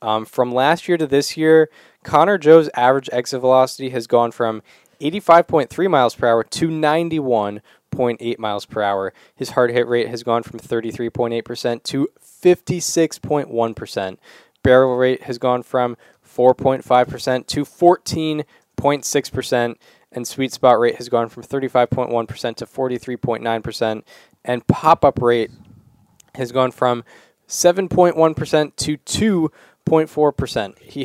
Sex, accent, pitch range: male, American, 120-145 Hz